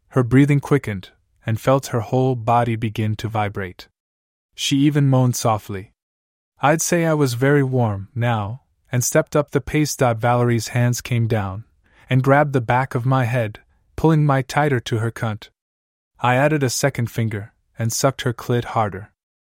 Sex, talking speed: male, 170 wpm